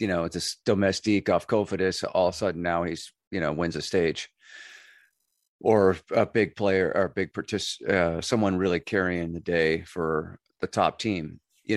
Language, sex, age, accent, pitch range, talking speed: English, male, 40-59, American, 85-120 Hz, 190 wpm